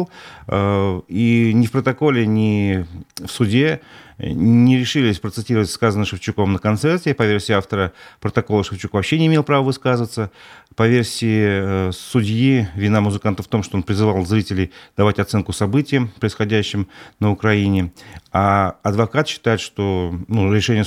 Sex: male